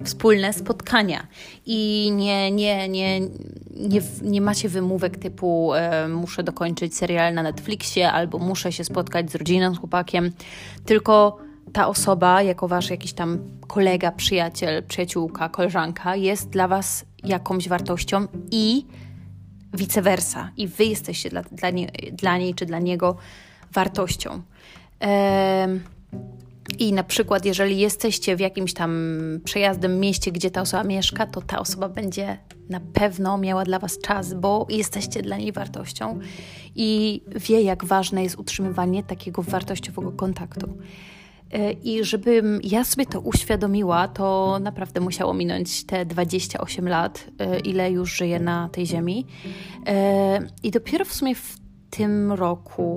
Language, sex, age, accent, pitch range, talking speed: Polish, female, 20-39, native, 175-200 Hz, 130 wpm